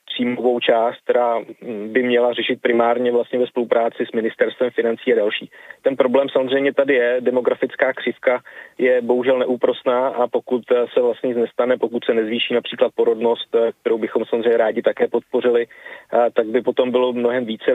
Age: 30-49